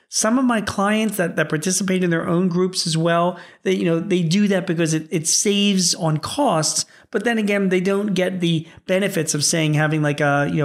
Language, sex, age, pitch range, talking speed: English, male, 40-59, 155-205 Hz, 220 wpm